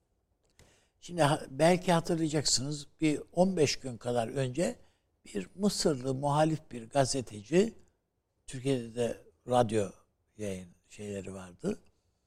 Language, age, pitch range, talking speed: Turkish, 60-79, 100-145 Hz, 95 wpm